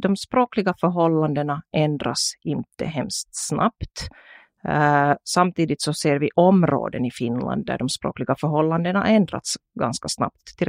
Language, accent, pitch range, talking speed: Finnish, native, 140-175 Hz, 130 wpm